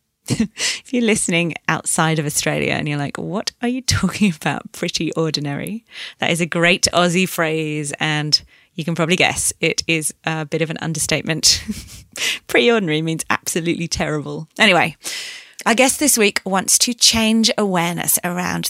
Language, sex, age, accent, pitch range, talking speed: English, female, 20-39, British, 160-220 Hz, 155 wpm